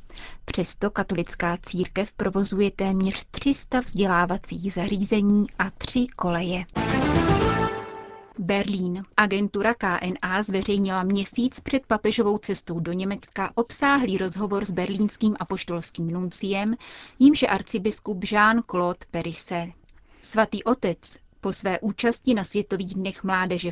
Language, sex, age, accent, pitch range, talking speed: Czech, female, 30-49, native, 180-220 Hz, 100 wpm